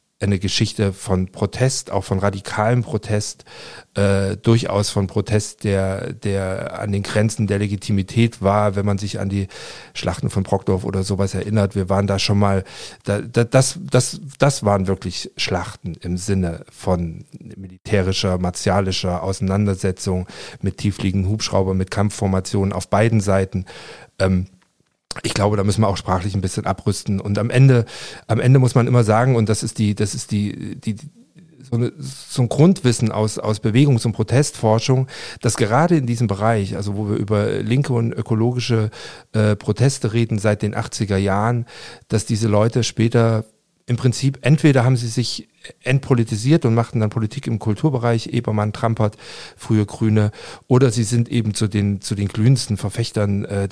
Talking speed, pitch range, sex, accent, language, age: 160 wpm, 100-120 Hz, male, German, German, 50-69